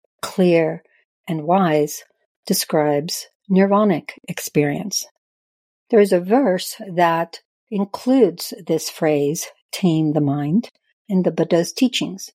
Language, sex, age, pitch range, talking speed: English, female, 60-79, 170-215 Hz, 100 wpm